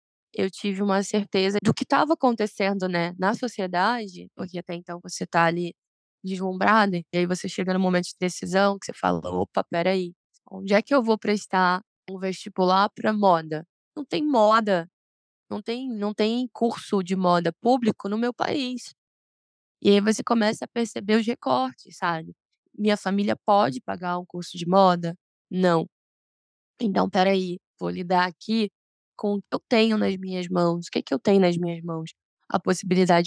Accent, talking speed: Brazilian, 175 wpm